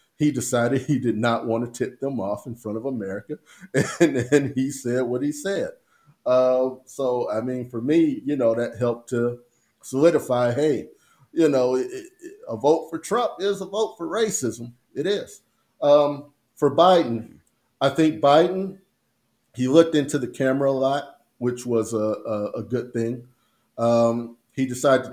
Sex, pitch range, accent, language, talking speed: male, 115-140 Hz, American, English, 165 wpm